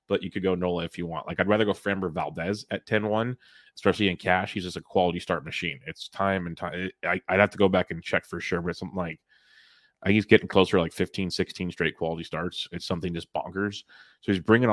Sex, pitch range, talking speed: male, 90-100 Hz, 255 wpm